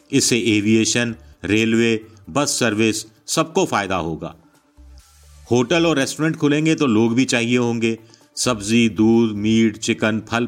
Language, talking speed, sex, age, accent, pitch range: Hindi, 125 wpm, male, 50-69, native, 105-135 Hz